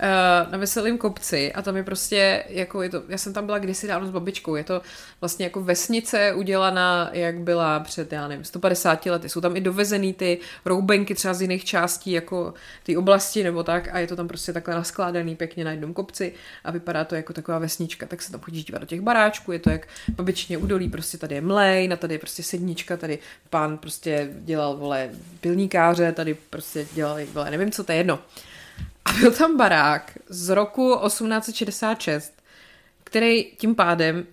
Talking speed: 190 wpm